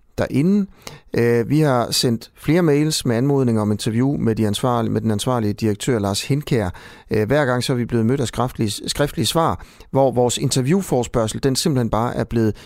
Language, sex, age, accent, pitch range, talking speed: Danish, male, 30-49, native, 105-135 Hz, 165 wpm